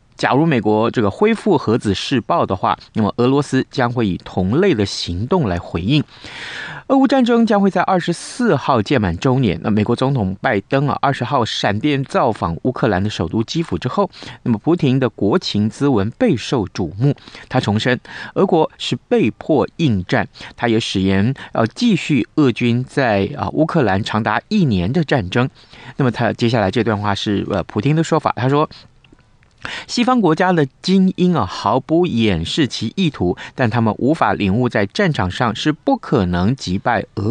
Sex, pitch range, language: male, 105-155 Hz, Chinese